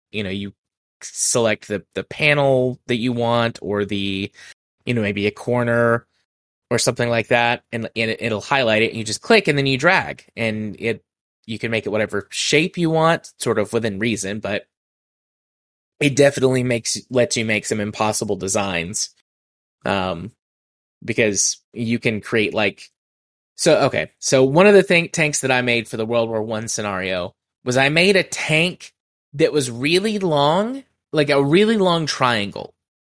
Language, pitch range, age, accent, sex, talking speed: English, 105-145 Hz, 20-39, American, male, 170 wpm